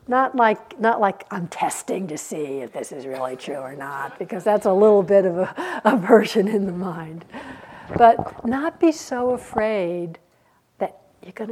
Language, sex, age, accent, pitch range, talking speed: English, female, 60-79, American, 180-240 Hz, 175 wpm